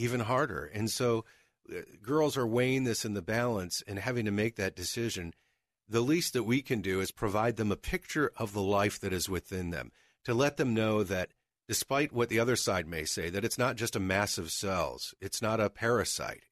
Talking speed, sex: 220 wpm, male